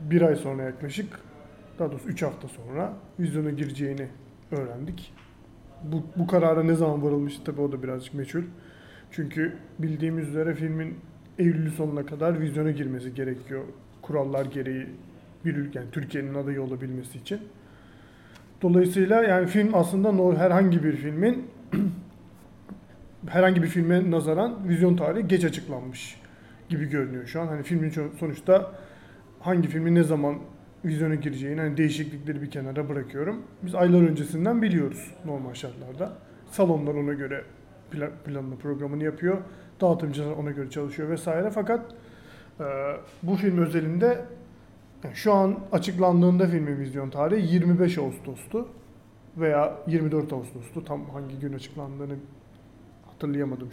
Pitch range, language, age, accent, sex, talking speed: 140-180 Hz, Turkish, 30-49, native, male, 130 wpm